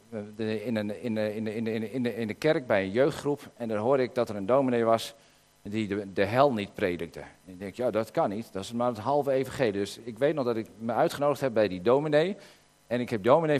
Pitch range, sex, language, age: 115-155 Hz, male, Dutch, 50-69